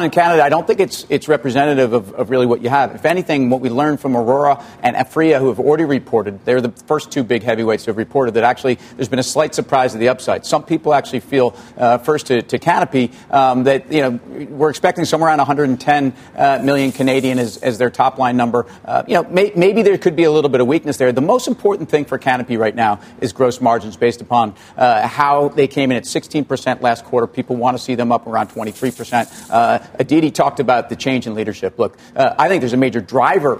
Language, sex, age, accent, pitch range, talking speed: English, male, 40-59, American, 120-145 Hz, 240 wpm